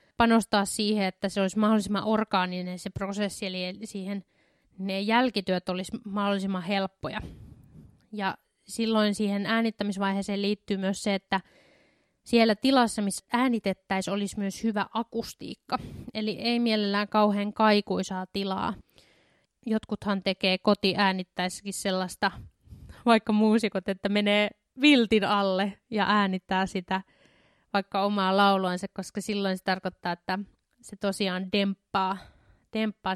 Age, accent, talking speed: 20-39, native, 115 wpm